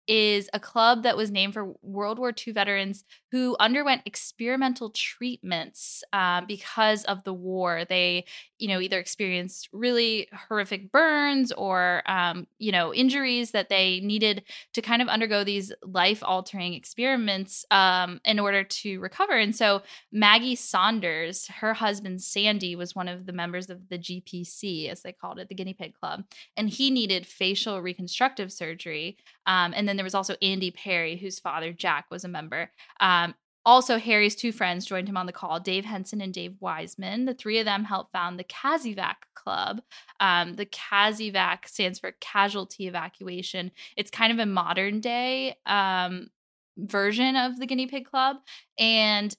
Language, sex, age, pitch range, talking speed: English, female, 10-29, 185-225 Hz, 165 wpm